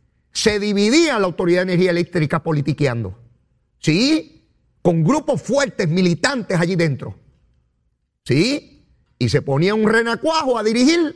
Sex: male